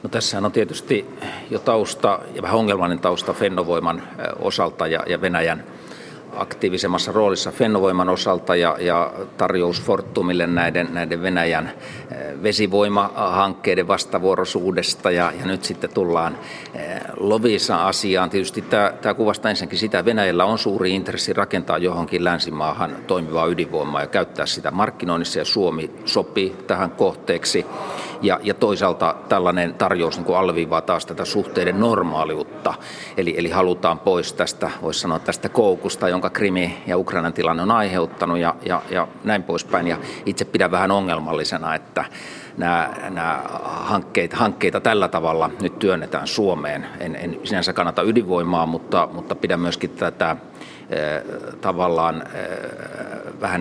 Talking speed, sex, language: 125 wpm, male, Finnish